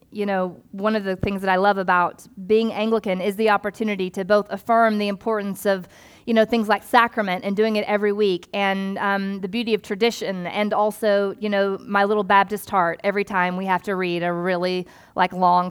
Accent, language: American, English